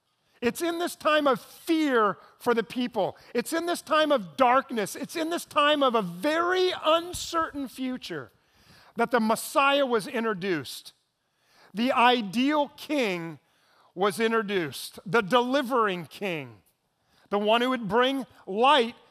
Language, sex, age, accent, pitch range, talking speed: English, male, 40-59, American, 190-265 Hz, 135 wpm